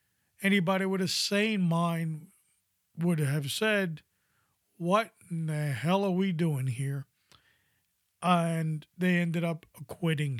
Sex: male